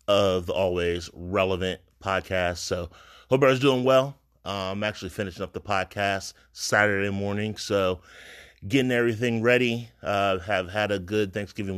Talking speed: 150 wpm